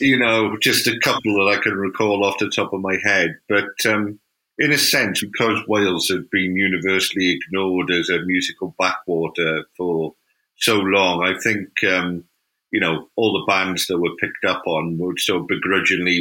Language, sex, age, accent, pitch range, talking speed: English, male, 50-69, British, 80-95 Hz, 180 wpm